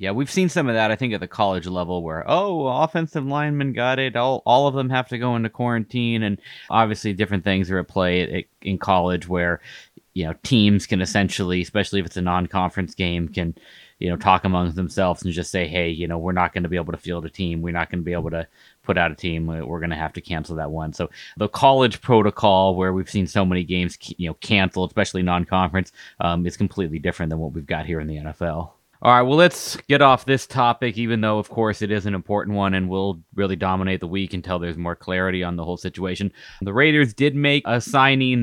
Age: 30-49